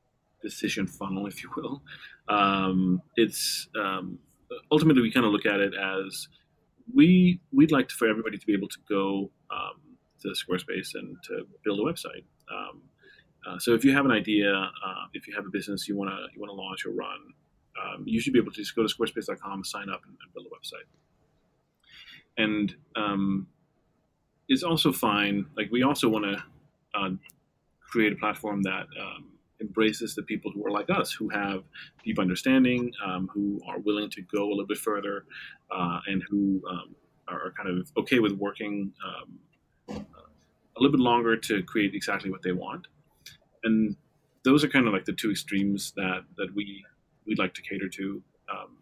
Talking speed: 185 wpm